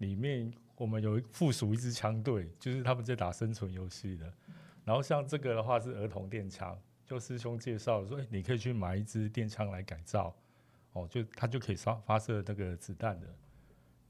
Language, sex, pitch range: Chinese, male, 100-125 Hz